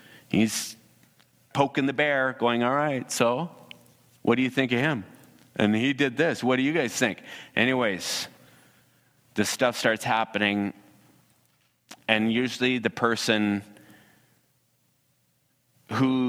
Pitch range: 100-130 Hz